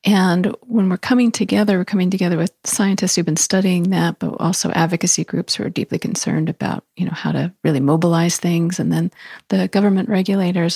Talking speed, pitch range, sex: 195 wpm, 160-195 Hz, female